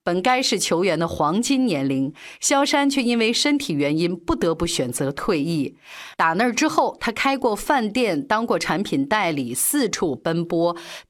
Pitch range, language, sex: 170-270 Hz, Chinese, female